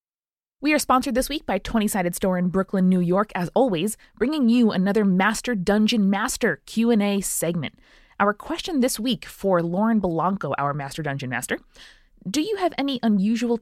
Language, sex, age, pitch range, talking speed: English, female, 20-39, 180-240 Hz, 170 wpm